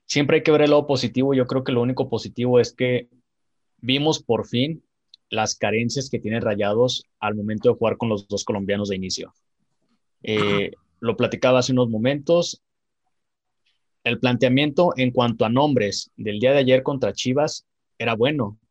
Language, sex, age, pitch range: Spanish, male, 20-39, 110-130 Hz